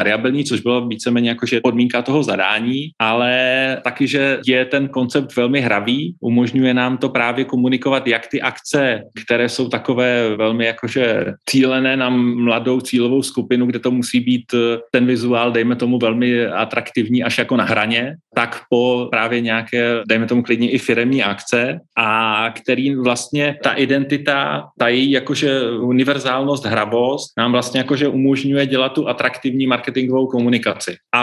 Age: 30-49